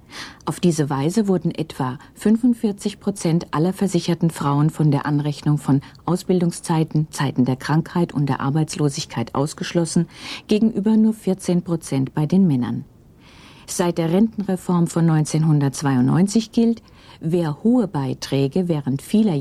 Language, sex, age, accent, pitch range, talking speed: German, female, 50-69, German, 140-185 Hz, 120 wpm